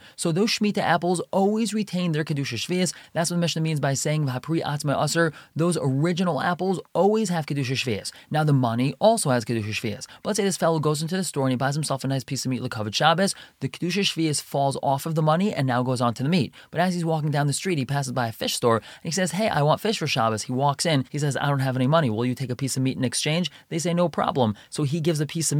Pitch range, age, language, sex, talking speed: 135-165 Hz, 30-49, English, male, 275 wpm